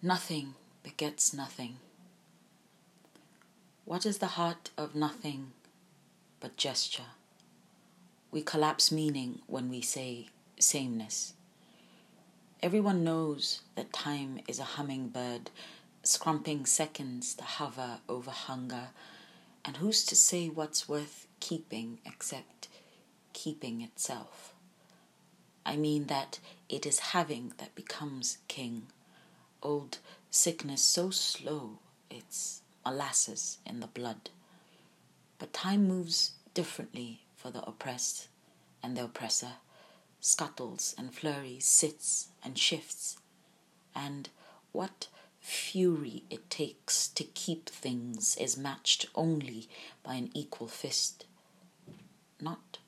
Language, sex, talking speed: English, female, 105 wpm